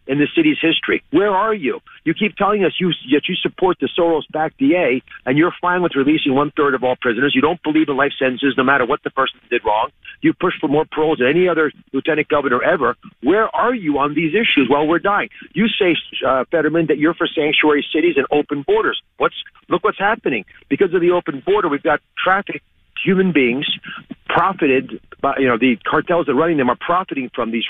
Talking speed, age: 220 wpm, 40-59